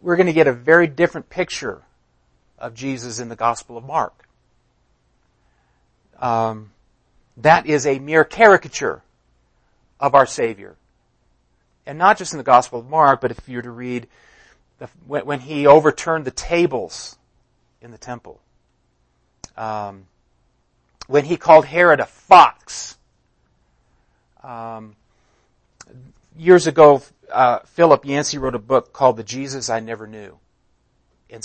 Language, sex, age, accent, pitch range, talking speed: English, male, 40-59, American, 110-145 Hz, 135 wpm